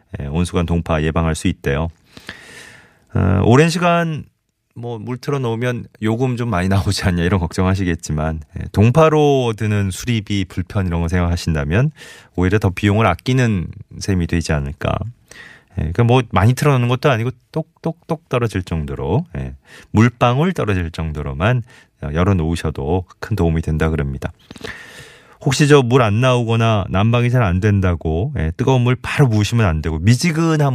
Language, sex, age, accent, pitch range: Korean, male, 30-49, native, 85-125 Hz